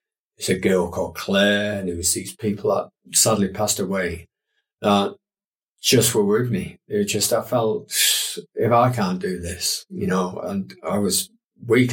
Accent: British